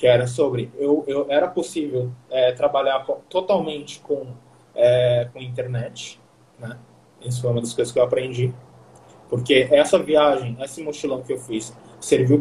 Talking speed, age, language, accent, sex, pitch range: 155 wpm, 20-39, Portuguese, Brazilian, male, 125-165 Hz